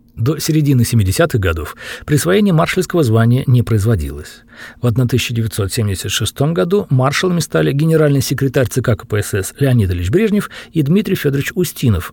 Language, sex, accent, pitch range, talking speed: Russian, male, native, 110-165 Hz, 125 wpm